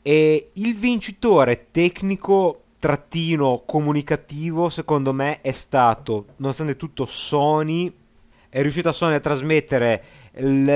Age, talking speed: 30-49, 110 wpm